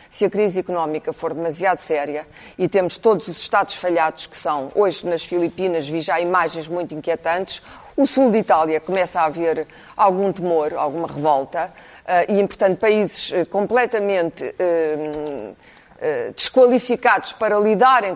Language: Portuguese